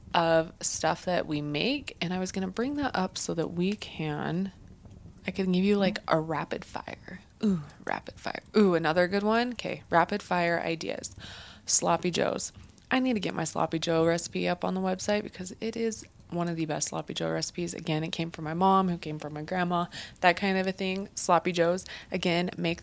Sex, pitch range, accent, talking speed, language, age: female, 165-210 Hz, American, 210 wpm, English, 20-39